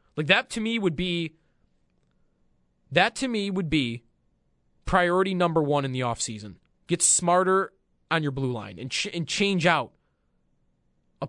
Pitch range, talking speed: 115-195 Hz, 160 wpm